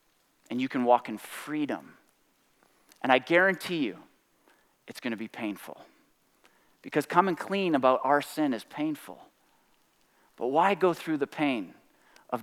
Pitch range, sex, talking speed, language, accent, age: 135-185 Hz, male, 145 wpm, English, American, 30-49